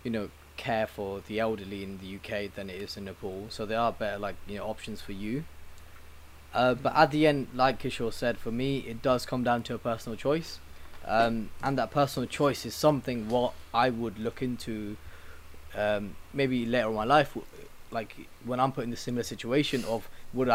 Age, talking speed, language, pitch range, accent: 20-39, 205 wpm, English, 110-135 Hz, British